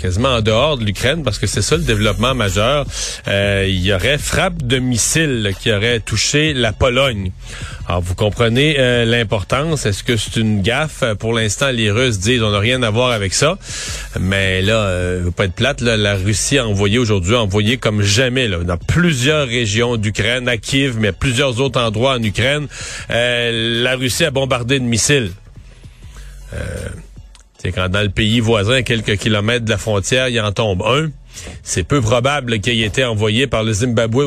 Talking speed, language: 195 wpm, French